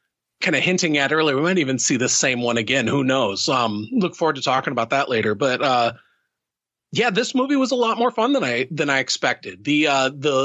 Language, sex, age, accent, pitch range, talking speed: English, male, 30-49, American, 135-175 Hz, 235 wpm